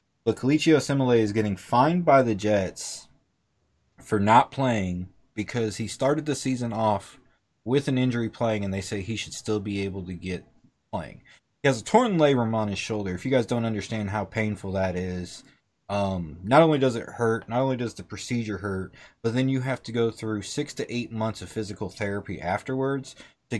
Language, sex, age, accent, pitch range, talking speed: English, male, 20-39, American, 105-135 Hz, 200 wpm